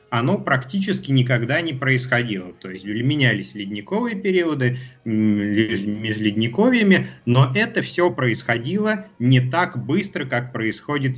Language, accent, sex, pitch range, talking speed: Russian, native, male, 105-150 Hz, 105 wpm